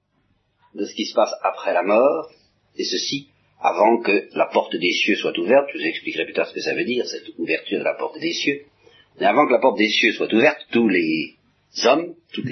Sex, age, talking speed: male, 50-69, 230 wpm